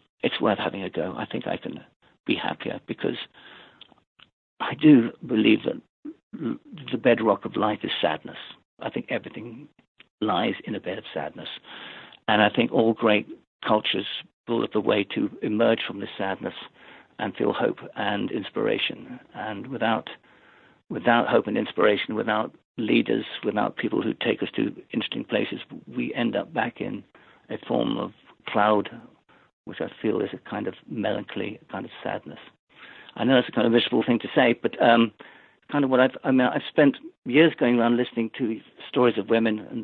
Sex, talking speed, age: male, 175 wpm, 60-79